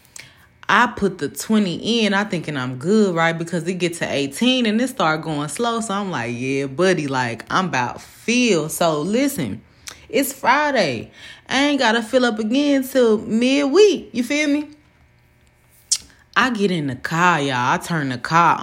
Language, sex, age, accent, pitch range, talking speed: English, female, 20-39, American, 145-230 Hz, 175 wpm